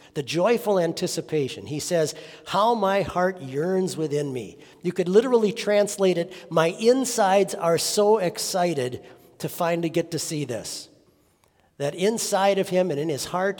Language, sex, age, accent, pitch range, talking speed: English, male, 50-69, American, 140-190 Hz, 155 wpm